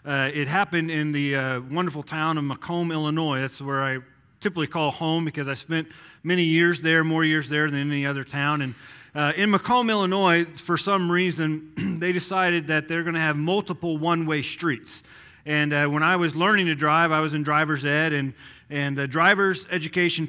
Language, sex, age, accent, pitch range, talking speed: English, male, 40-59, American, 150-180 Hz, 195 wpm